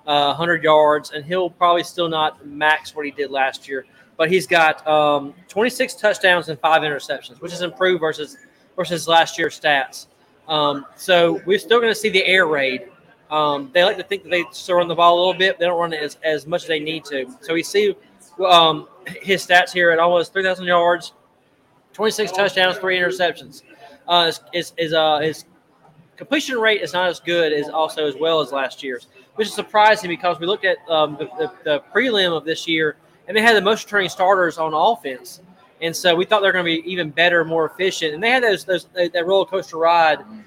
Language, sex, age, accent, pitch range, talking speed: English, male, 20-39, American, 155-190 Hz, 210 wpm